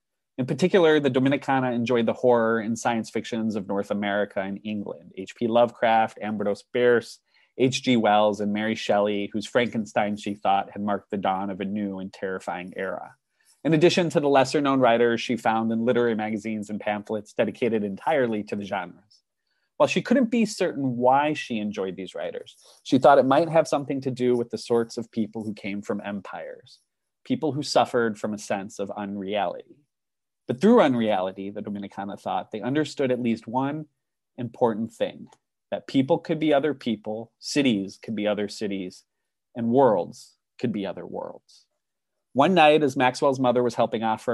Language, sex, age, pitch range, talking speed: English, male, 30-49, 105-130 Hz, 175 wpm